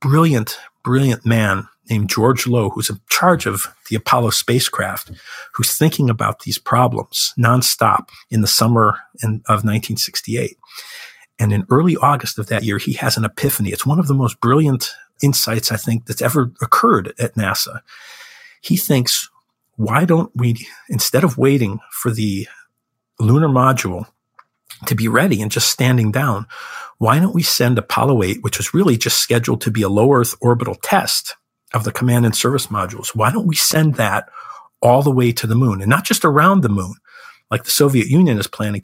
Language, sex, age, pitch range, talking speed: English, male, 50-69, 110-135 Hz, 180 wpm